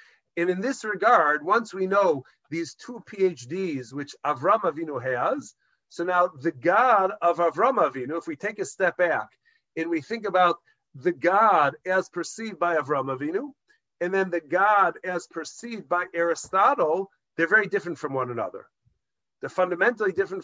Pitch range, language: 165-225 Hz, English